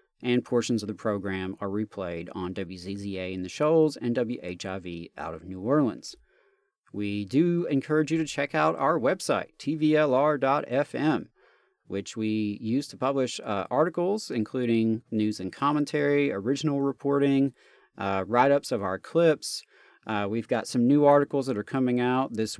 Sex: male